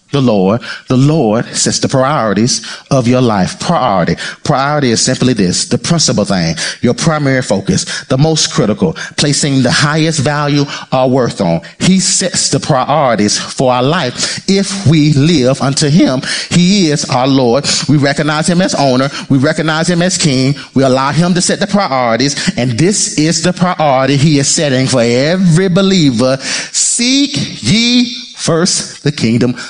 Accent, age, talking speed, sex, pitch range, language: American, 30-49, 160 wpm, male, 140-230 Hz, English